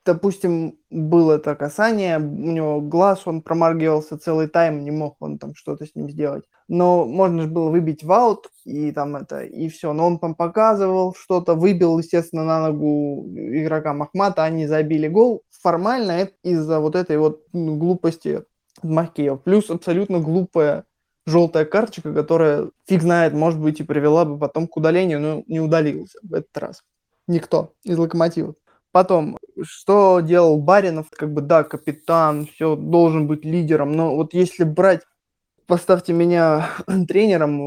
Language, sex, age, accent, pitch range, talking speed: Russian, male, 20-39, native, 150-175 Hz, 155 wpm